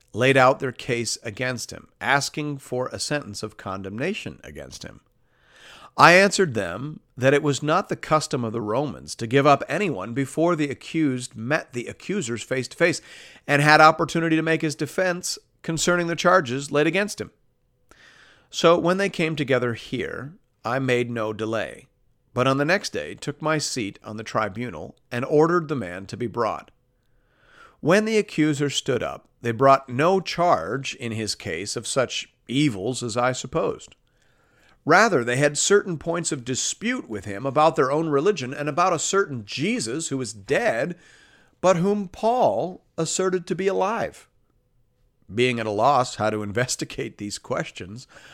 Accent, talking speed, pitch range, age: American, 170 wpm, 120-165 Hz, 40-59